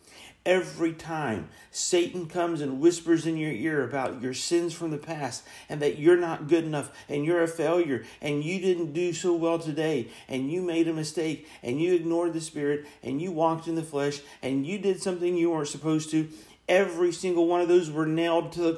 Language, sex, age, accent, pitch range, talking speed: English, male, 40-59, American, 145-170 Hz, 210 wpm